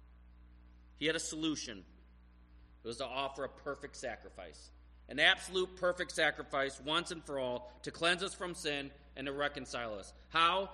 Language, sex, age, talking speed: English, male, 30-49, 160 wpm